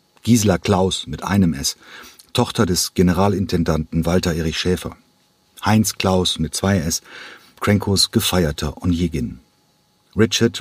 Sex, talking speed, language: male, 105 wpm, German